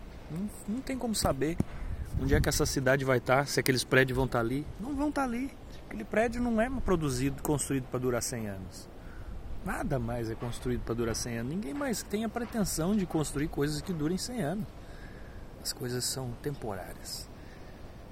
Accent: Brazilian